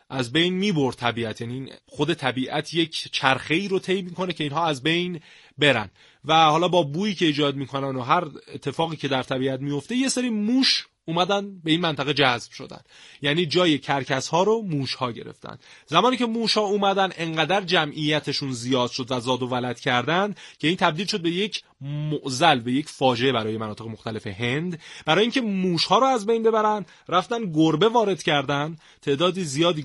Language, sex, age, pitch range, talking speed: Persian, male, 30-49, 130-180 Hz, 190 wpm